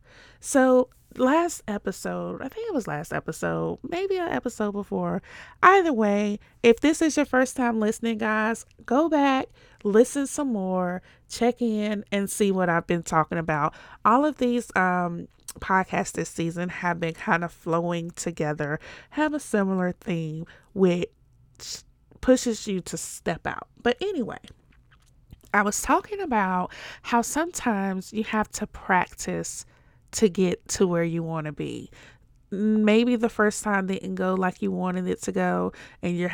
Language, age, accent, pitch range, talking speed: English, 30-49, American, 170-235 Hz, 155 wpm